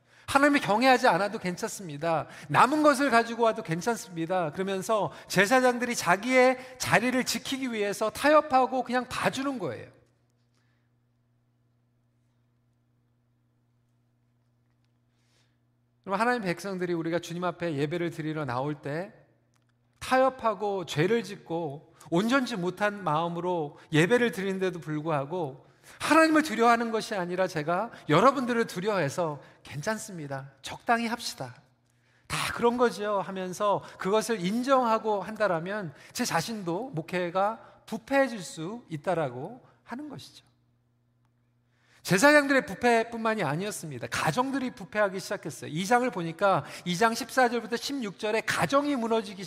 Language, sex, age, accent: Korean, male, 40-59, native